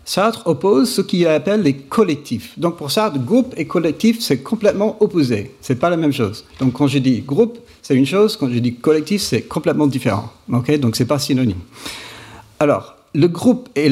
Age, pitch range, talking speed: 50-69, 120-185 Hz, 200 wpm